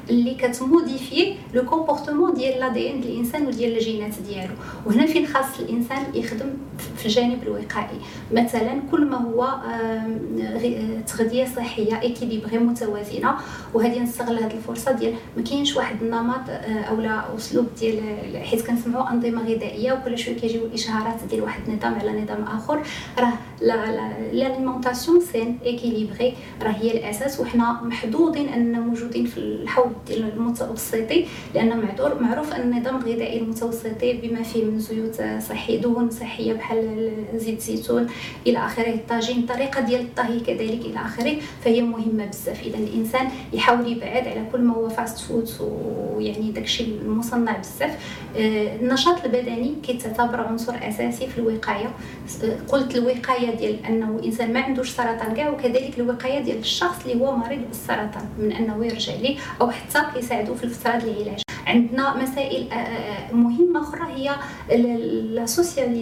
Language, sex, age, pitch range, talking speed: French, female, 30-49, 225-255 Hz, 130 wpm